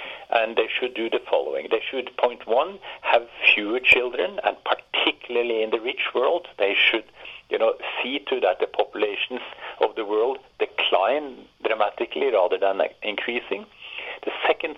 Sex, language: male, English